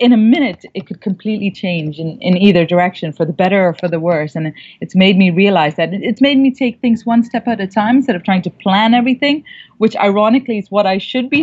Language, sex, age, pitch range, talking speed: English, female, 30-49, 180-230 Hz, 245 wpm